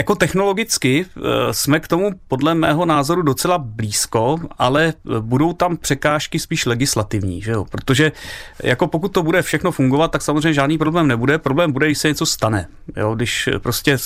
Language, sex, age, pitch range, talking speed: Czech, male, 30-49, 120-155 Hz, 160 wpm